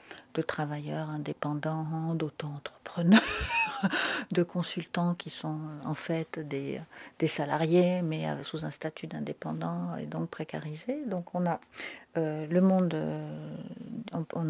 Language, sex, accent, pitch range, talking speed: French, female, French, 160-205 Hz, 115 wpm